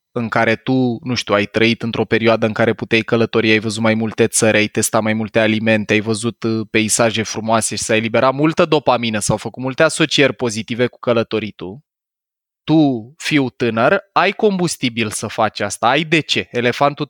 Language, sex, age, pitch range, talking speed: Romanian, male, 20-39, 115-150 Hz, 180 wpm